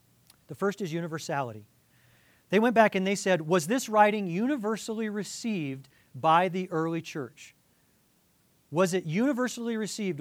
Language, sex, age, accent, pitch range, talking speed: English, male, 40-59, American, 145-195 Hz, 135 wpm